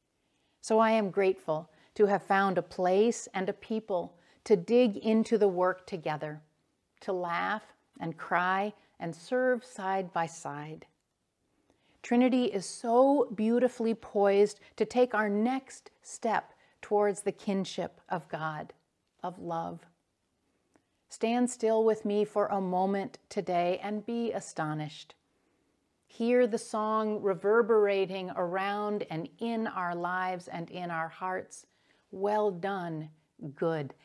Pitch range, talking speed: 175-225 Hz, 125 wpm